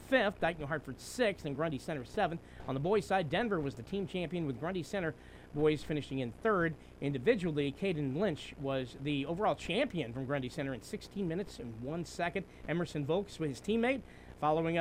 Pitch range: 135-185 Hz